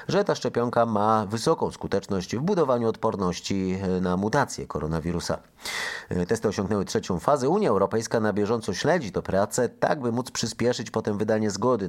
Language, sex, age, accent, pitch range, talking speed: Polish, male, 30-49, native, 90-120 Hz, 150 wpm